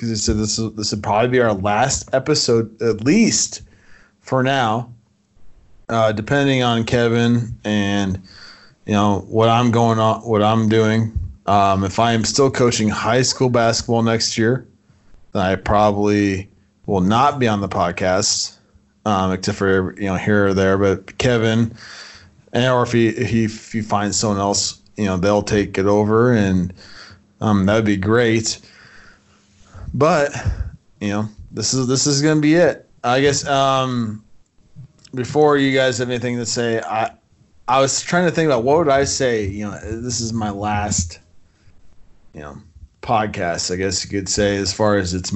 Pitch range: 100-120 Hz